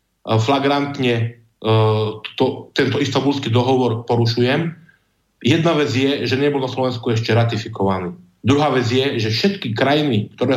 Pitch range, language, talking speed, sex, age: 110-135 Hz, Slovak, 130 wpm, male, 50-69